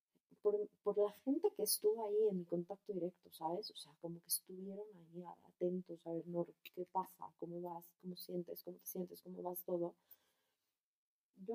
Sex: female